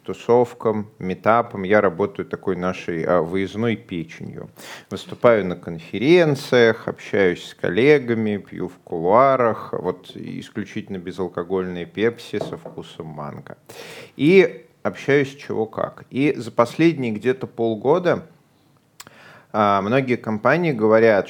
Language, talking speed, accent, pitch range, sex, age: Russian, 100 wpm, native, 95-120 Hz, male, 30-49